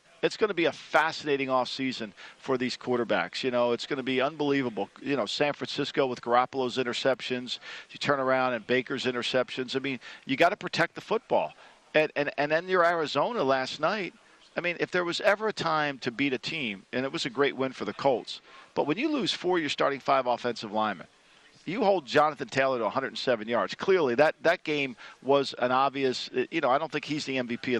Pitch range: 125-160 Hz